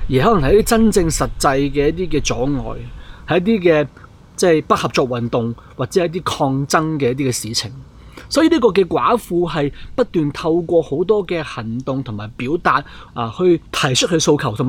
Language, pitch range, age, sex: Chinese, 120-170 Hz, 30-49, male